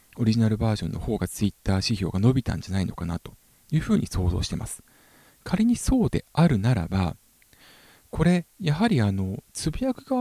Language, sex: Japanese, male